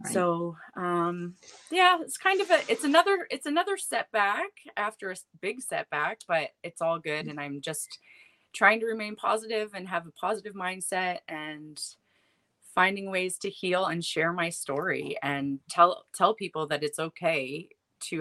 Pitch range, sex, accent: 150-200 Hz, female, American